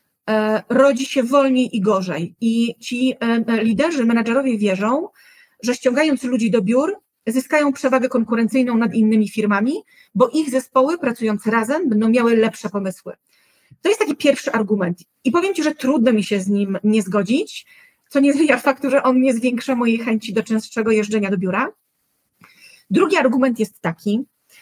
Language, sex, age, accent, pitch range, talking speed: Polish, female, 30-49, native, 215-275 Hz, 160 wpm